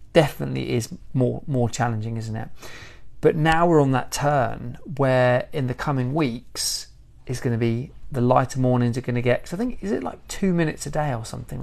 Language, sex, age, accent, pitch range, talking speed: English, male, 30-49, British, 120-140 Hz, 210 wpm